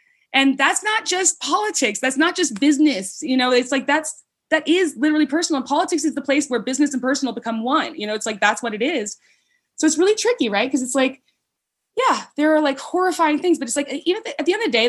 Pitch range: 210-305 Hz